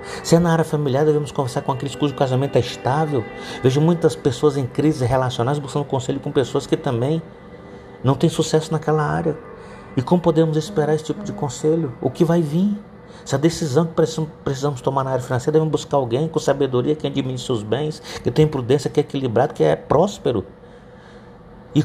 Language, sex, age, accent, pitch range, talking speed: Portuguese, male, 50-69, Brazilian, 130-170 Hz, 195 wpm